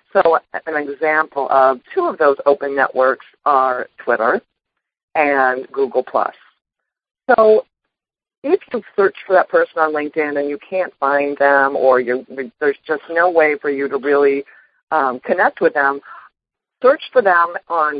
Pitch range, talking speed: 150-210 Hz, 145 wpm